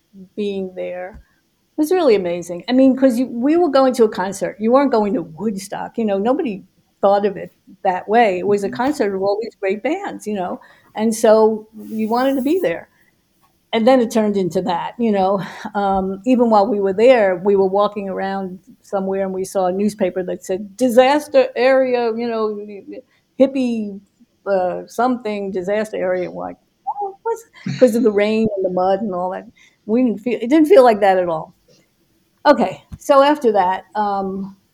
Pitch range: 190-230 Hz